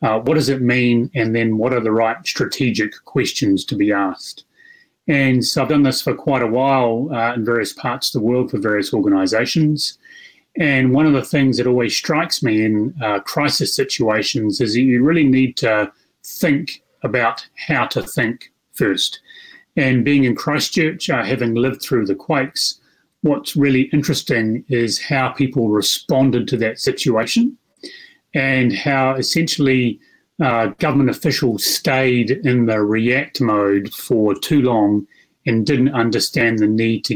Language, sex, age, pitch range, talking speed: English, male, 30-49, 115-150 Hz, 160 wpm